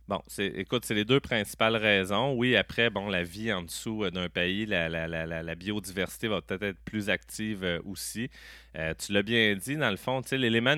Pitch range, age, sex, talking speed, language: 90-115 Hz, 30-49, male, 225 wpm, French